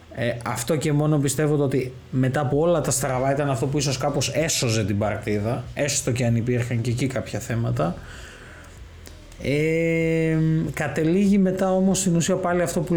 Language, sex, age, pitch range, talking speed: Greek, male, 20-39, 115-150 Hz, 170 wpm